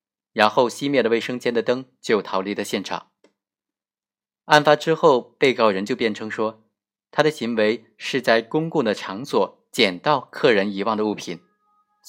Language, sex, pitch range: Chinese, male, 105-140 Hz